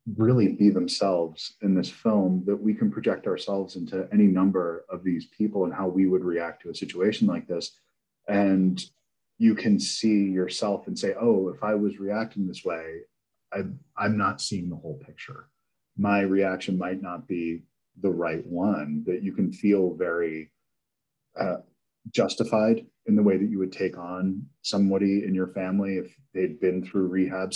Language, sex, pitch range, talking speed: English, male, 90-100 Hz, 175 wpm